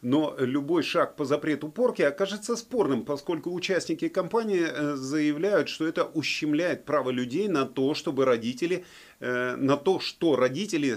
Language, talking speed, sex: Russian, 135 wpm, male